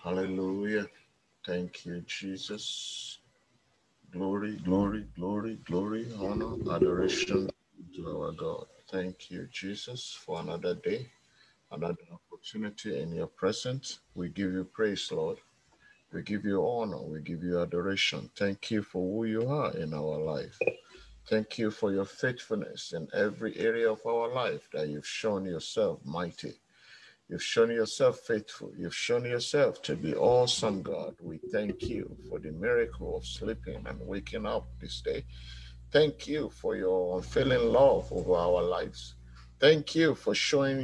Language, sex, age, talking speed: English, male, 50-69, 145 wpm